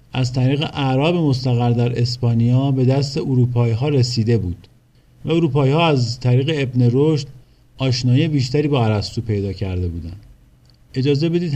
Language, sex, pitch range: Persian, male, 120-155 Hz